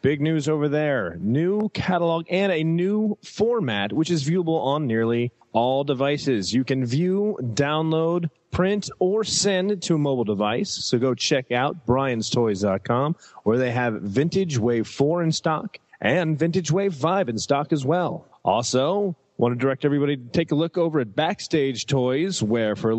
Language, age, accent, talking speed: English, 30-49, American, 170 wpm